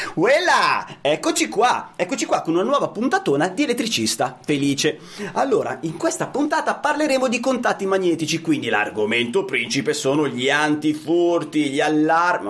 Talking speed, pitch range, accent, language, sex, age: 135 wpm, 165-275 Hz, native, Italian, male, 30-49